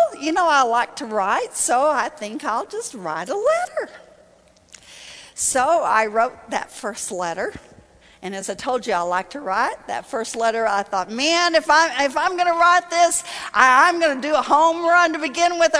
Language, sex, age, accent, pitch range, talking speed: English, female, 50-69, American, 235-355 Hz, 200 wpm